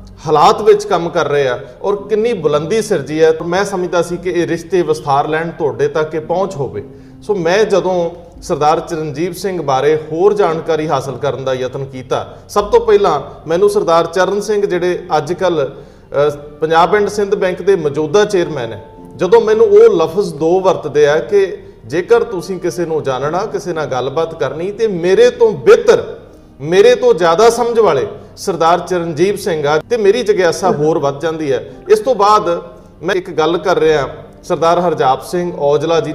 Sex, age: male, 40-59